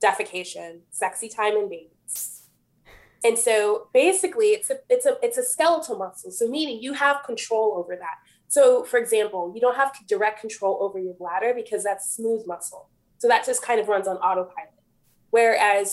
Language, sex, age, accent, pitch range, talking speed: English, female, 20-39, American, 185-310 Hz, 165 wpm